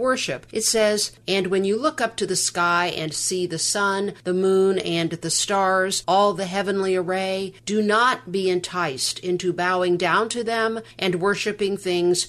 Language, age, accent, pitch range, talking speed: English, 50-69, American, 165-210 Hz, 175 wpm